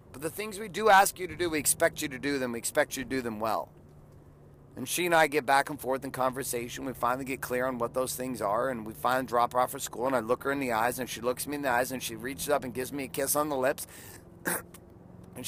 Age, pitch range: 30-49, 115-140 Hz